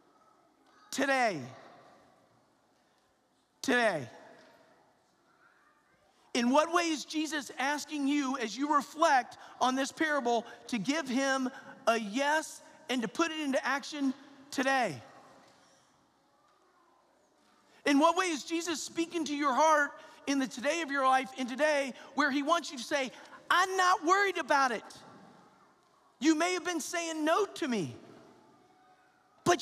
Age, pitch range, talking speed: 40-59, 225-305 Hz, 130 wpm